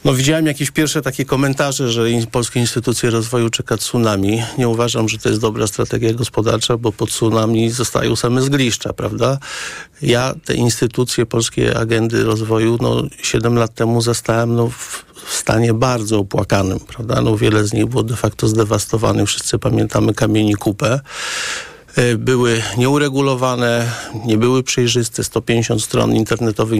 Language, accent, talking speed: Polish, native, 145 wpm